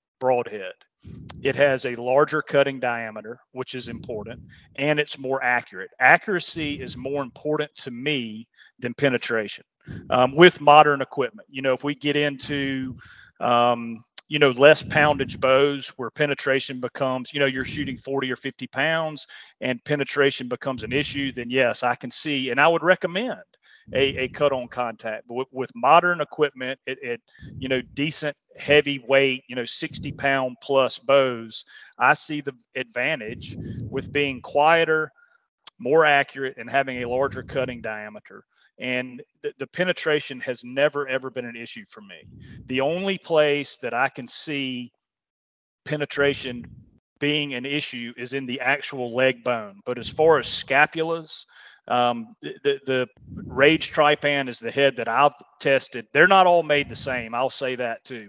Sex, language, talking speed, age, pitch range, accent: male, English, 160 wpm, 40-59, 125-145 Hz, American